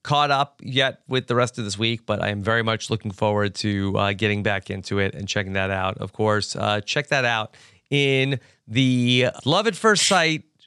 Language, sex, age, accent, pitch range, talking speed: English, male, 30-49, American, 120-170 Hz, 215 wpm